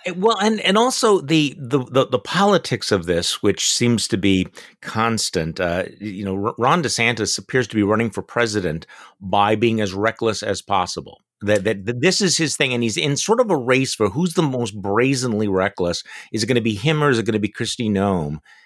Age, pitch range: 50-69, 110-155 Hz